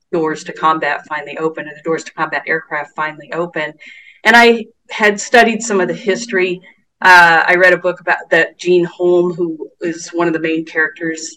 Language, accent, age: English, American, 40-59